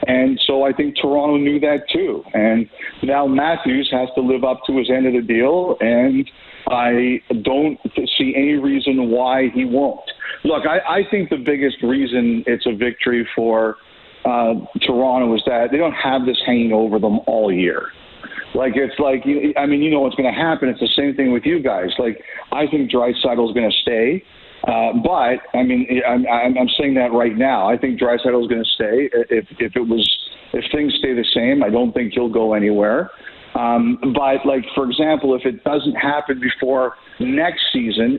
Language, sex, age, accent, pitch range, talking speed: English, male, 50-69, American, 120-140 Hz, 195 wpm